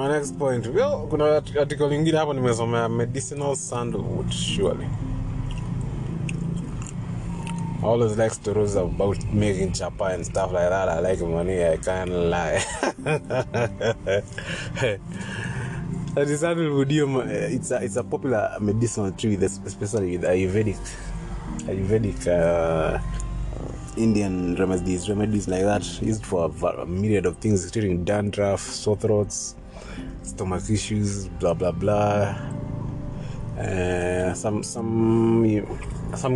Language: Swahili